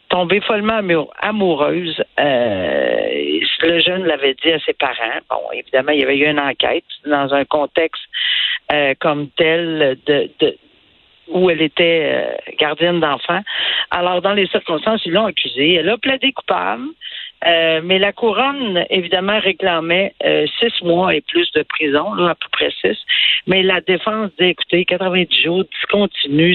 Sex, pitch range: female, 155-200 Hz